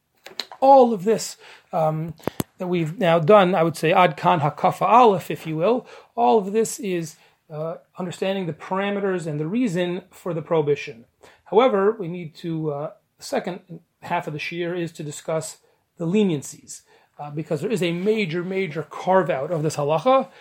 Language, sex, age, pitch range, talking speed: English, male, 30-49, 155-205 Hz, 170 wpm